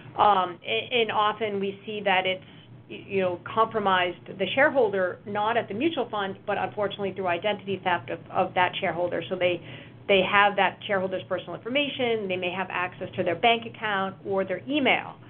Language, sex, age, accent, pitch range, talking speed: English, female, 40-59, American, 185-215 Hz, 175 wpm